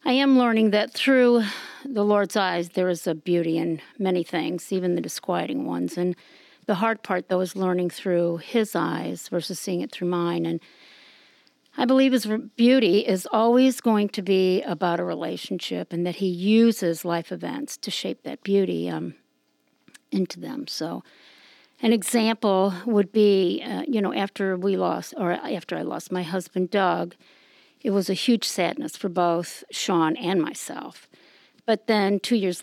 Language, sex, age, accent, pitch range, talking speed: English, female, 50-69, American, 175-230 Hz, 170 wpm